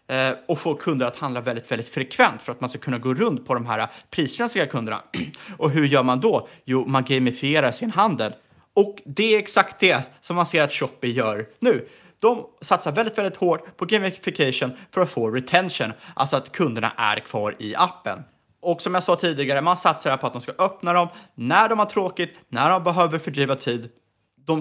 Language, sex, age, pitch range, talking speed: Swedish, male, 30-49, 130-185 Hz, 205 wpm